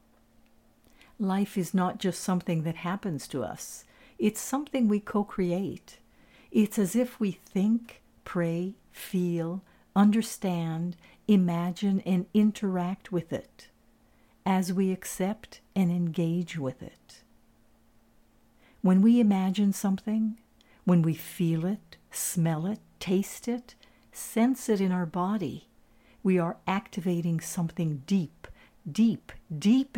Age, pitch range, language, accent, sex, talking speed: 60-79, 170-205 Hz, English, American, female, 115 wpm